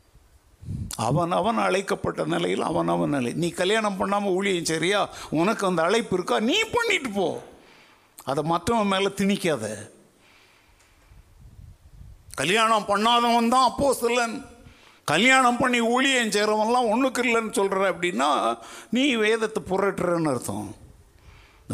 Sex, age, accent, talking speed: male, 60-79, native, 105 wpm